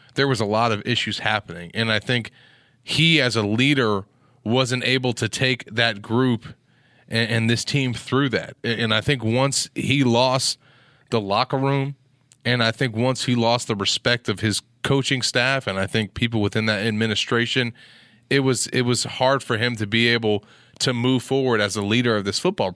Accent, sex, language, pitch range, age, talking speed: American, male, English, 110-130 Hz, 30-49, 190 wpm